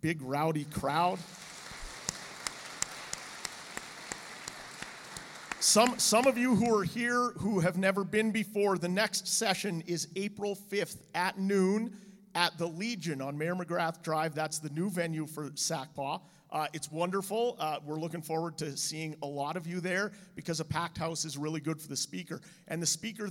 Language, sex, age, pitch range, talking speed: English, male, 40-59, 155-190 Hz, 160 wpm